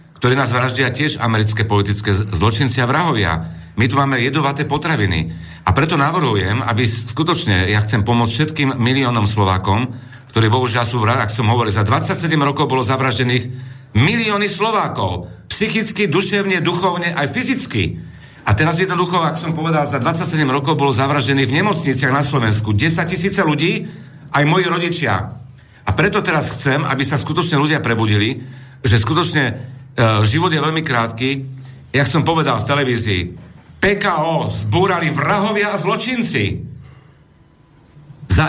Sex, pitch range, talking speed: male, 120-170 Hz, 140 wpm